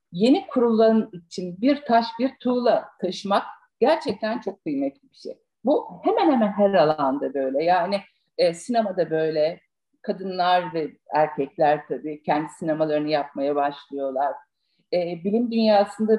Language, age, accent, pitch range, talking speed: Turkish, 50-69, native, 190-280 Hz, 125 wpm